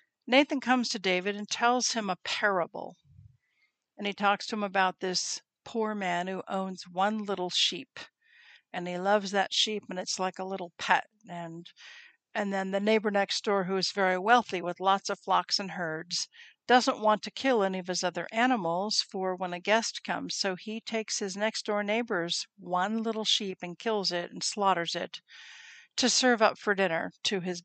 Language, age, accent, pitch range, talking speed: English, 60-79, American, 180-225 Hz, 190 wpm